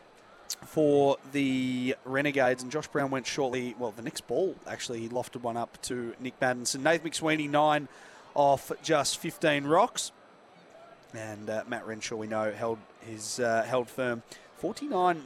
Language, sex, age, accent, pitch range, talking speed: English, male, 30-49, Australian, 120-150 Hz, 150 wpm